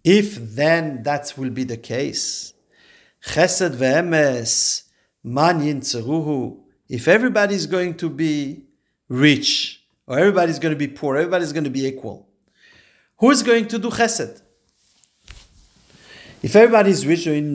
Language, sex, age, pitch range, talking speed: English, male, 50-69, 140-195 Hz, 130 wpm